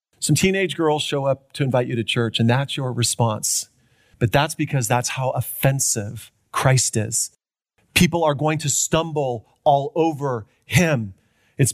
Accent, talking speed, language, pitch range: American, 160 wpm, English, 125-170 Hz